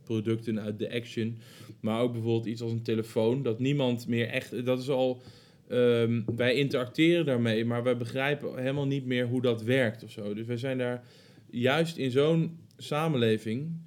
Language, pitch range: Dutch, 115-140 Hz